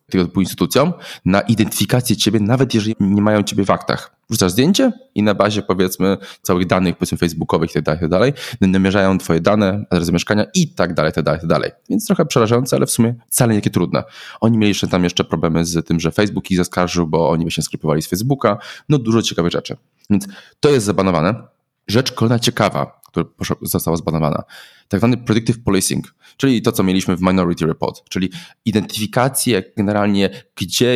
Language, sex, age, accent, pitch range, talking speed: Polish, male, 20-39, native, 85-110 Hz, 175 wpm